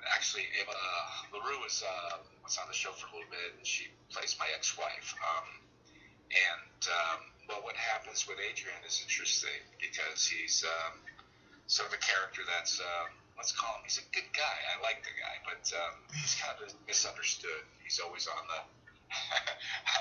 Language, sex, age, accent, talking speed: English, male, 40-59, American, 170 wpm